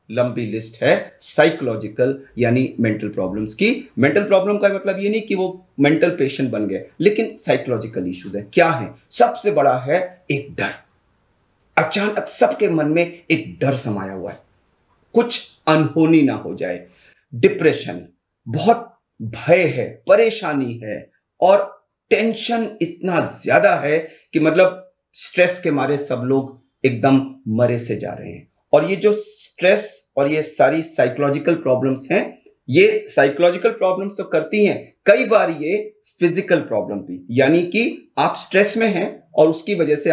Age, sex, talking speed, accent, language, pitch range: 40-59, male, 150 wpm, native, Hindi, 135-205 Hz